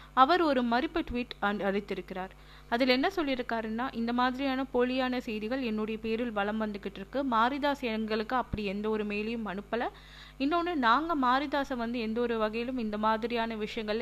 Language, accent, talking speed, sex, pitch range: Tamil, native, 140 wpm, female, 210-255 Hz